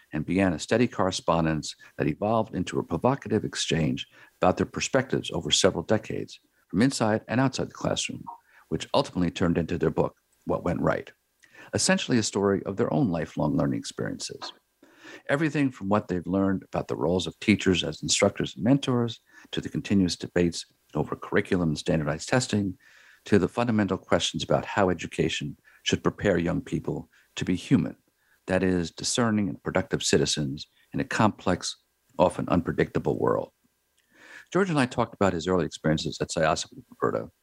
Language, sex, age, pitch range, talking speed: English, male, 50-69, 85-120 Hz, 165 wpm